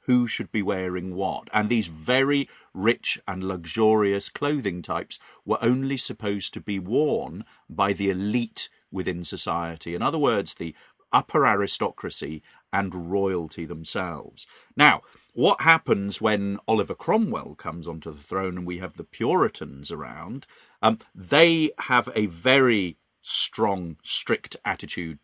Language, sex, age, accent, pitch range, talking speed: English, male, 40-59, British, 90-120 Hz, 135 wpm